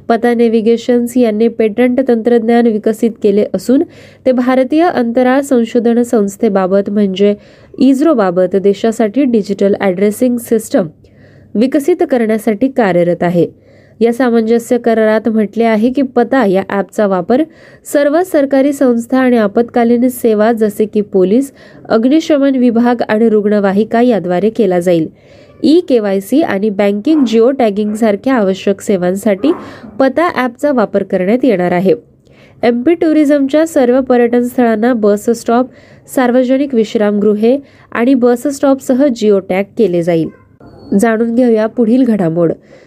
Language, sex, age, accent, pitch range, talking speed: Marathi, female, 20-39, native, 205-255 Hz, 95 wpm